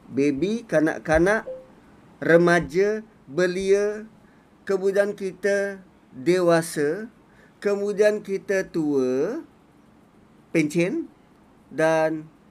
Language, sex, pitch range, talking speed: Malay, male, 155-225 Hz, 60 wpm